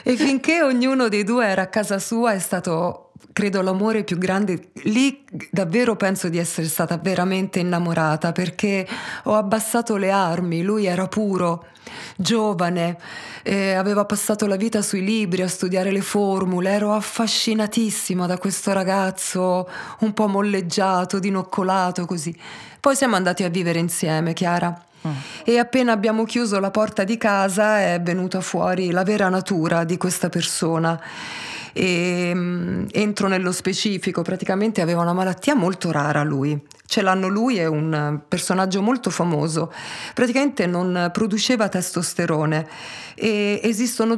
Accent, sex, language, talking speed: native, female, Italian, 140 wpm